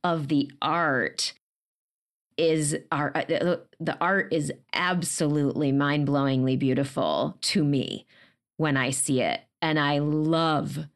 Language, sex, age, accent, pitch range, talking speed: English, female, 30-49, American, 135-160 Hz, 115 wpm